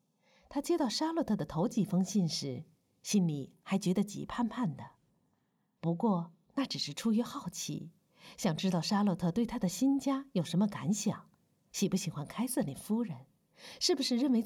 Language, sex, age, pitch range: Chinese, female, 50-69, 165-220 Hz